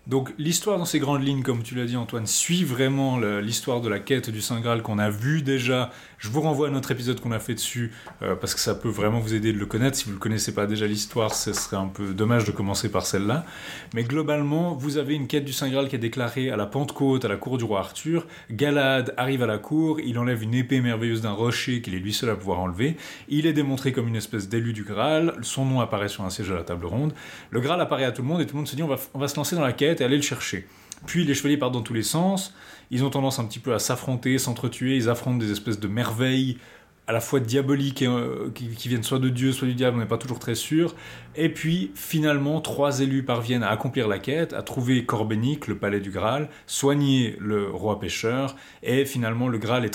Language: French